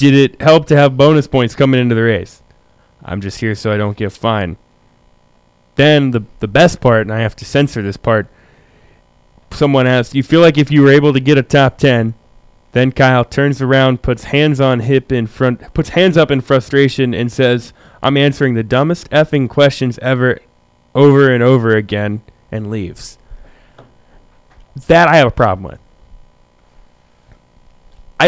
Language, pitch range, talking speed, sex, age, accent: English, 95-140 Hz, 175 wpm, male, 20-39, American